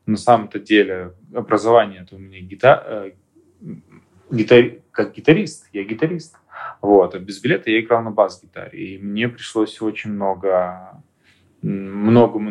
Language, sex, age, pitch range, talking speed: Russian, male, 20-39, 95-115 Hz, 120 wpm